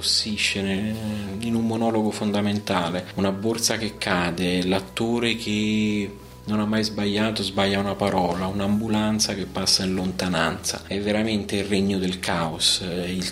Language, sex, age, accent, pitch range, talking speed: Italian, male, 30-49, native, 90-105 Hz, 130 wpm